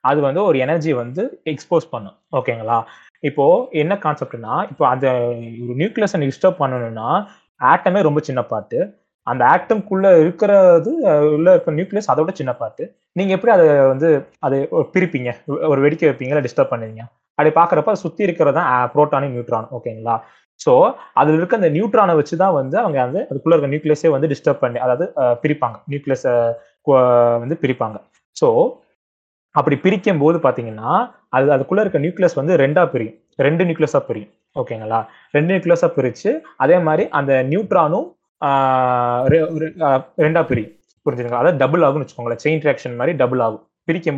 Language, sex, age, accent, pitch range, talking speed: Tamil, male, 20-39, native, 125-165 Hz, 140 wpm